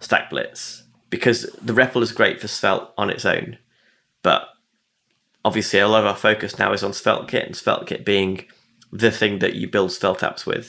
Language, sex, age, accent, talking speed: English, male, 20-39, British, 195 wpm